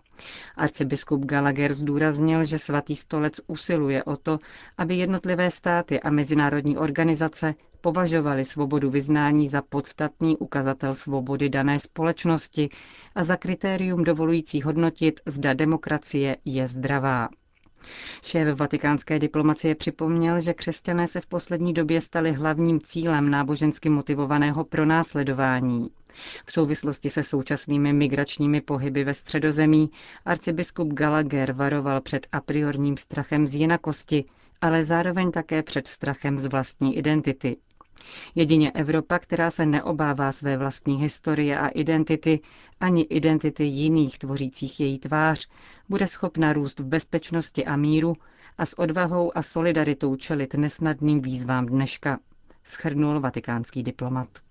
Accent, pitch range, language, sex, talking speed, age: native, 140-160 Hz, Czech, female, 120 wpm, 40-59